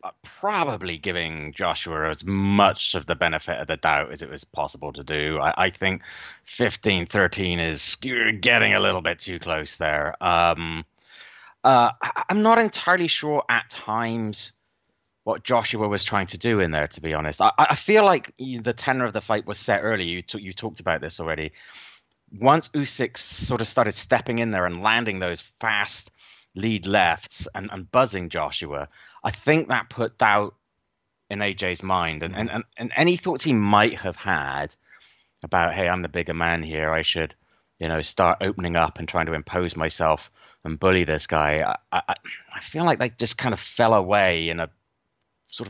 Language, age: English, 30-49